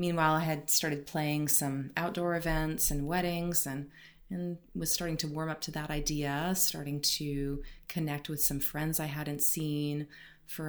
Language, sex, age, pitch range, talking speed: English, female, 30-49, 140-170 Hz, 170 wpm